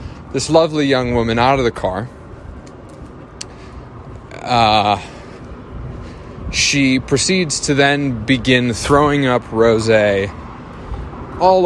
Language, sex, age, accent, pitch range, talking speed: English, male, 30-49, American, 110-145 Hz, 95 wpm